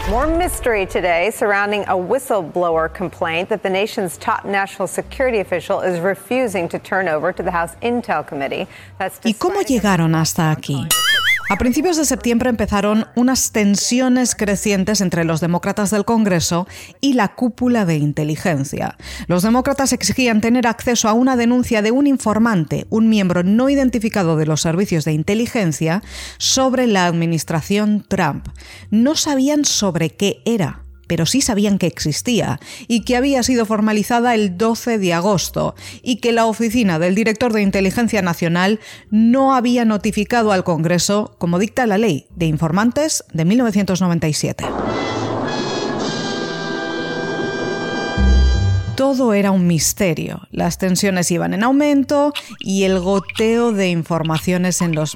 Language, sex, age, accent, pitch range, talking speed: Spanish, female, 30-49, American, 170-235 Hz, 135 wpm